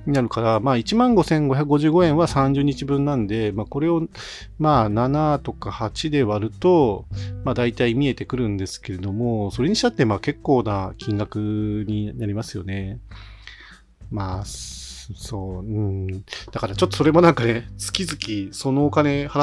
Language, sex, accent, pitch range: Japanese, male, native, 105-150 Hz